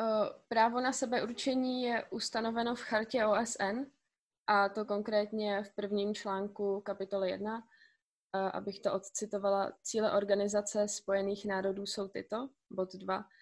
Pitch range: 195-215 Hz